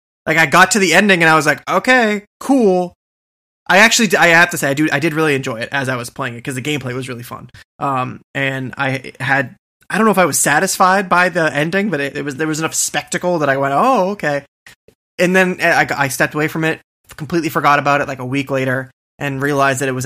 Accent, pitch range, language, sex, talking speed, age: American, 130-170 Hz, English, male, 250 wpm, 20-39